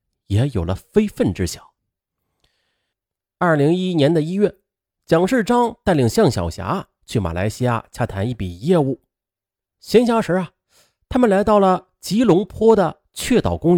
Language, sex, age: Chinese, male, 30-49